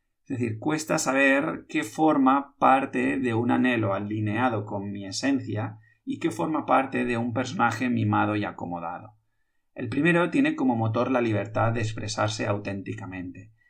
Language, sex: Spanish, male